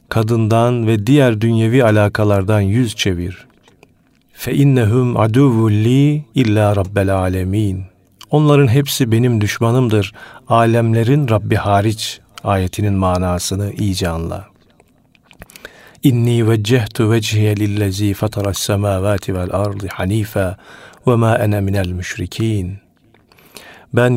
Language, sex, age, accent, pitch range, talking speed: Turkish, male, 40-59, native, 100-120 Hz, 90 wpm